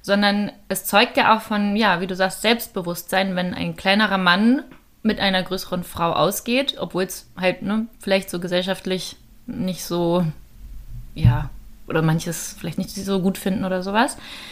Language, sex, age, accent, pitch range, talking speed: German, female, 20-39, German, 175-200 Hz, 160 wpm